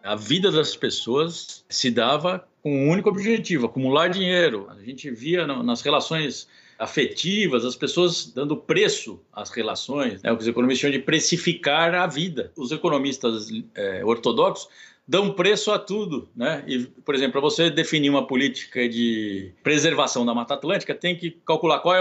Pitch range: 130-175 Hz